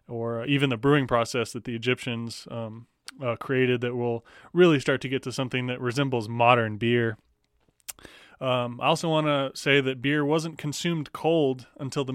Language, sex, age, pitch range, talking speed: English, male, 20-39, 120-140 Hz, 180 wpm